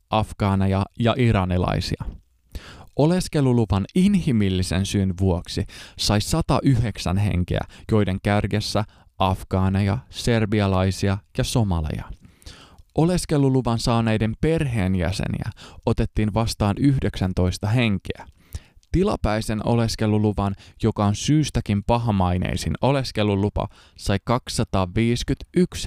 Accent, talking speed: native, 75 wpm